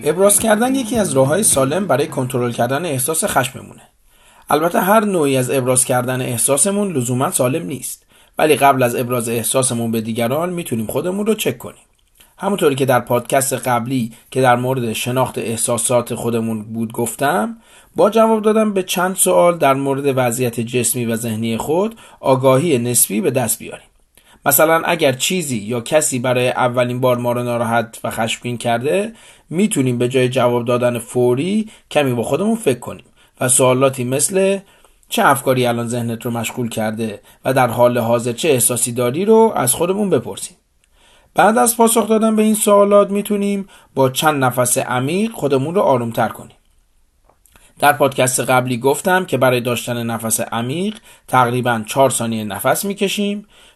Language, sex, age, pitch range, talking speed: Persian, male, 30-49, 120-175 Hz, 160 wpm